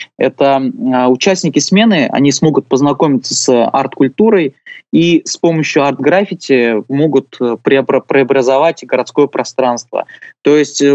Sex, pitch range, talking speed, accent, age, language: male, 125-150 Hz, 100 wpm, native, 20-39, Russian